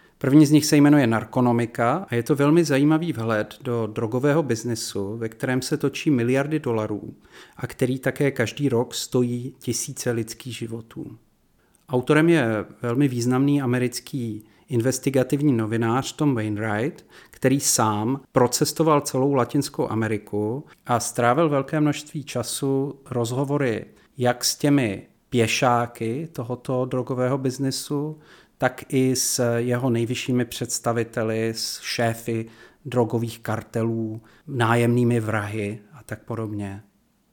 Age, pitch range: 40-59, 115-140 Hz